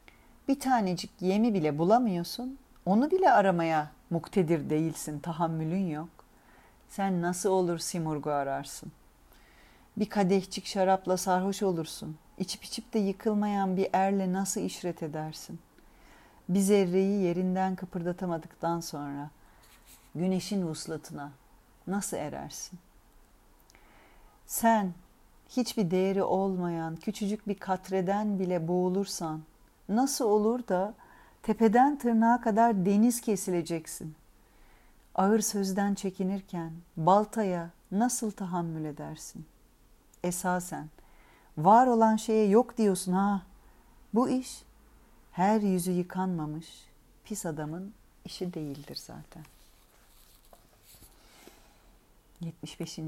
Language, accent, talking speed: Turkish, native, 95 wpm